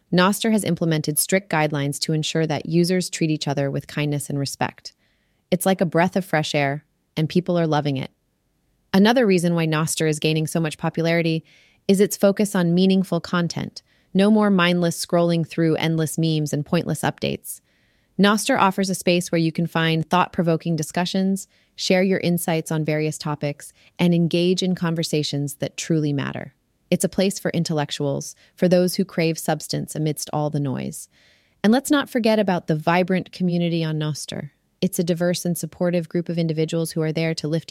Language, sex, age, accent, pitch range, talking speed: English, female, 30-49, American, 155-180 Hz, 180 wpm